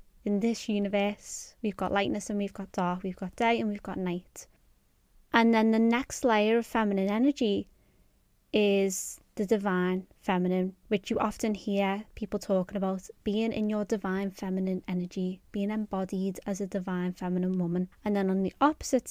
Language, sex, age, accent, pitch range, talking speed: English, female, 20-39, British, 190-215 Hz, 170 wpm